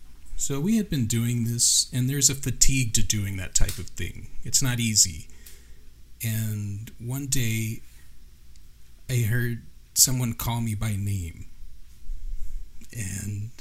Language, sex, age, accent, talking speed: English, male, 40-59, American, 130 wpm